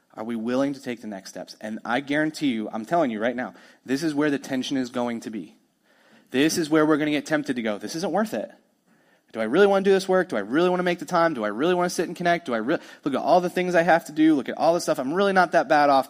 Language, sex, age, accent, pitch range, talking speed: English, male, 30-49, American, 110-170 Hz, 325 wpm